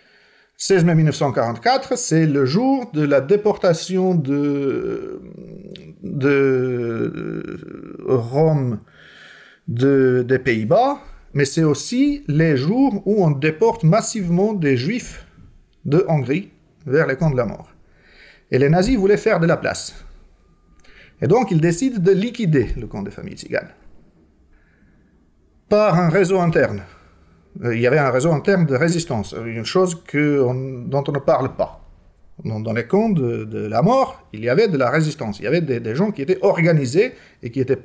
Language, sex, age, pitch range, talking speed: French, male, 50-69, 125-195 Hz, 160 wpm